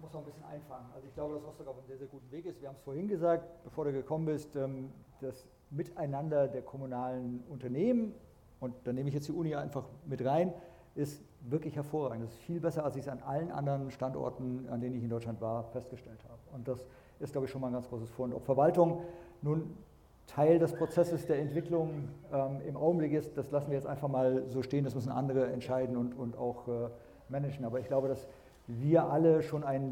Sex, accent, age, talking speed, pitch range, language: male, German, 50-69, 215 wpm, 135-165 Hz, German